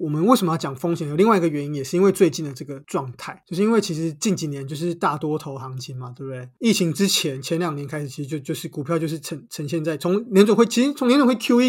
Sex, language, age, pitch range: male, Chinese, 20-39, 150-185 Hz